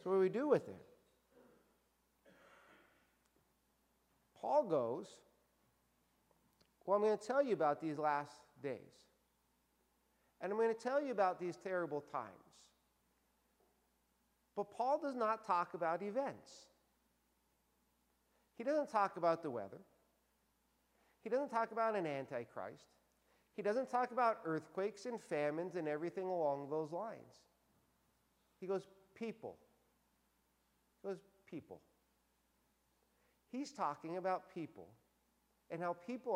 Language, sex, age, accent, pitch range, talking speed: English, male, 50-69, American, 165-230 Hz, 120 wpm